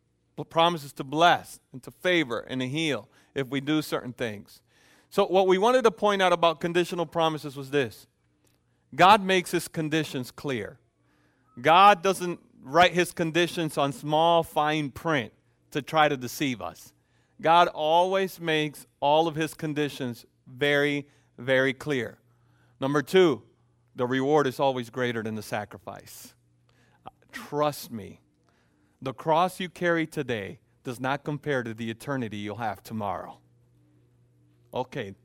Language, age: English, 40-59